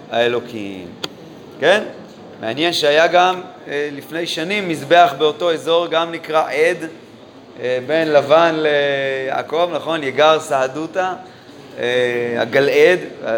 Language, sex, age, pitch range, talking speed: Hebrew, male, 30-49, 150-185 Hz, 90 wpm